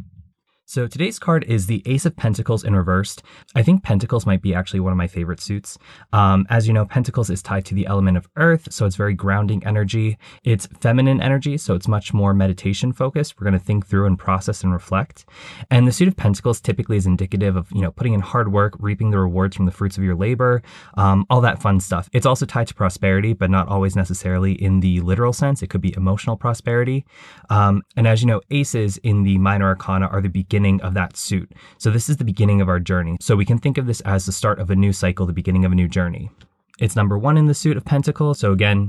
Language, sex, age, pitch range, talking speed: English, male, 20-39, 95-120 Hz, 240 wpm